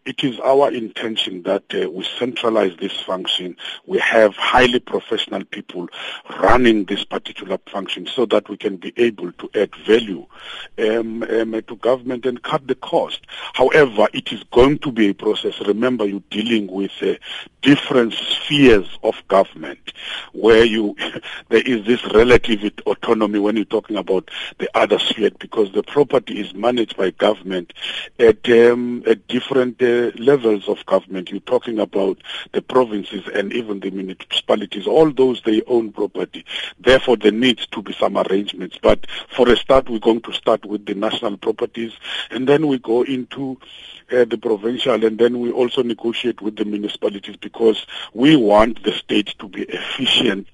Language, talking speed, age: English, 165 wpm, 50-69